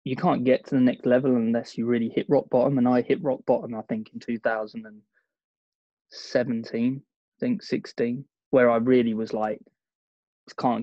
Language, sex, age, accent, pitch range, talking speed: English, male, 20-39, British, 110-130 Hz, 175 wpm